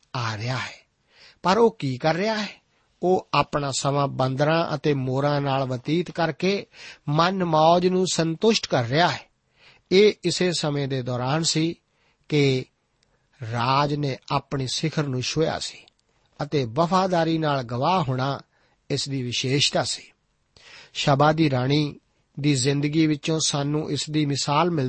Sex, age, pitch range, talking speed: male, 50-69, 135-160 Hz, 120 wpm